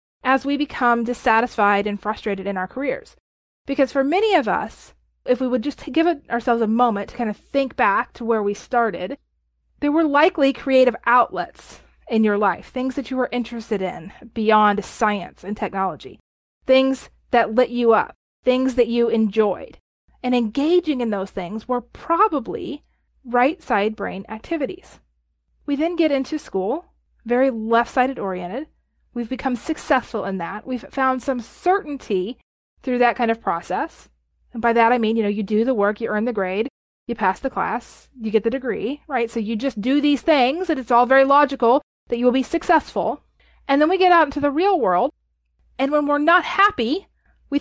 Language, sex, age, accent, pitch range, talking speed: English, female, 30-49, American, 225-285 Hz, 185 wpm